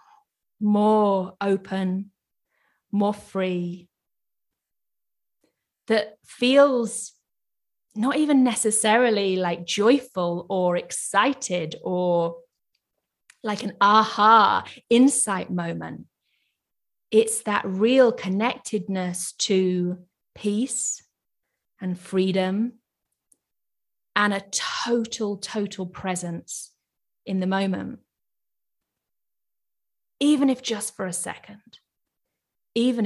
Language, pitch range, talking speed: English, 185-235 Hz, 75 wpm